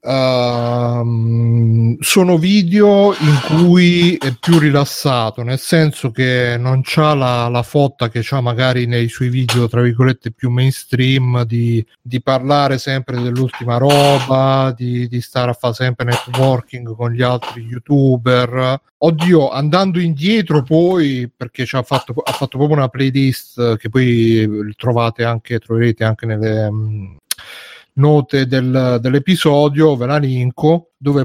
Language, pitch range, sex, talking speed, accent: Italian, 120-145 Hz, male, 135 wpm, native